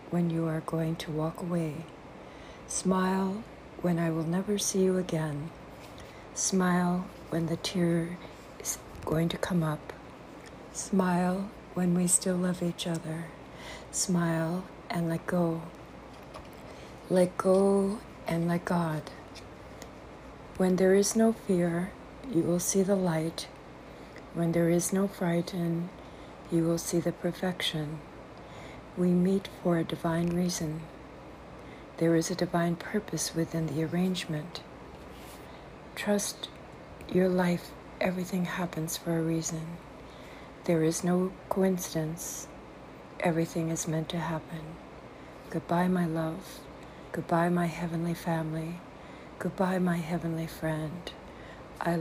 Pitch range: 165-180 Hz